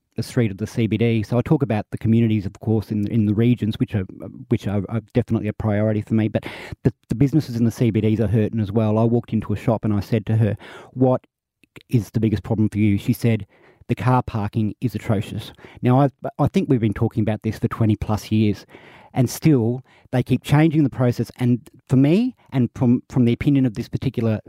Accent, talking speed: Australian, 230 wpm